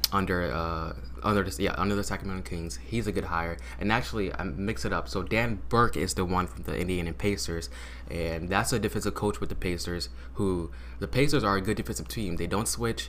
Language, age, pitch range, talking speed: English, 20-39, 75-100 Hz, 225 wpm